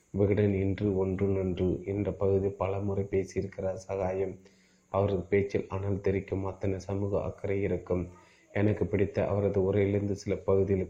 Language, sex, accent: Tamil, male, native